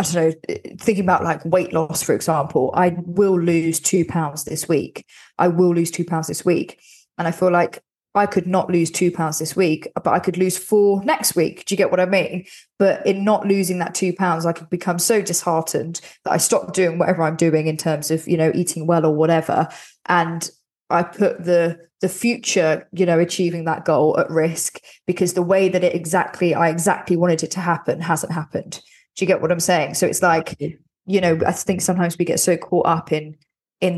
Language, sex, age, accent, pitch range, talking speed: English, female, 20-39, British, 160-185 Hz, 220 wpm